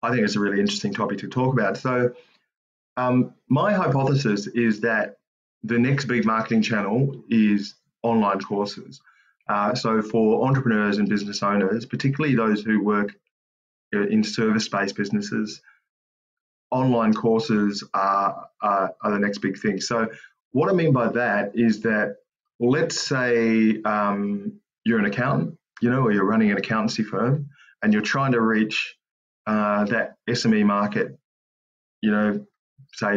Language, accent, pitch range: English, Australian, 100-120 Hz